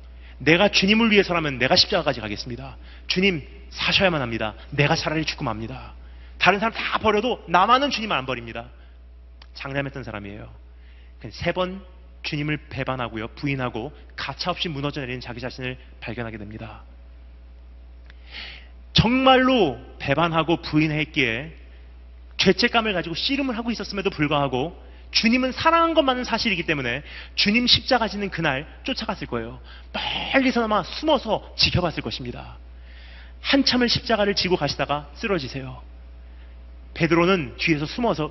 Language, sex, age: Korean, male, 30-49